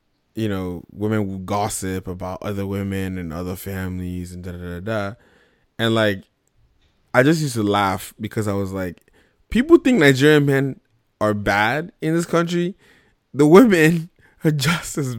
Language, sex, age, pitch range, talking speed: English, male, 20-39, 100-125 Hz, 160 wpm